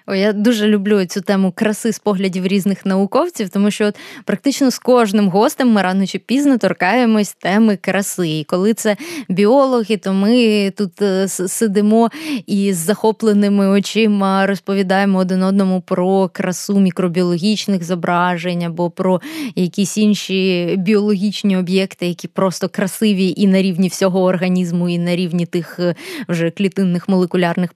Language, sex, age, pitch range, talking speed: Ukrainian, female, 20-39, 175-205 Hz, 140 wpm